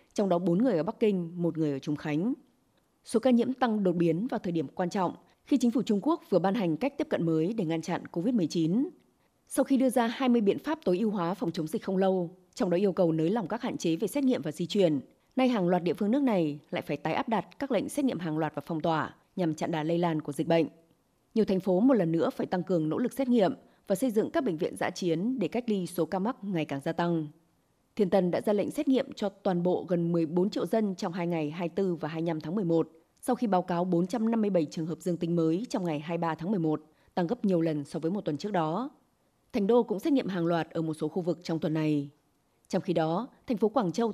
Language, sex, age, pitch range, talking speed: Vietnamese, female, 20-39, 165-220 Hz, 270 wpm